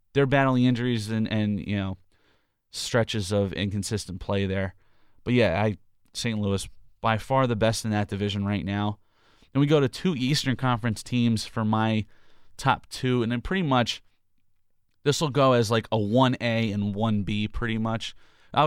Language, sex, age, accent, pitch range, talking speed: English, male, 30-49, American, 100-120 Hz, 175 wpm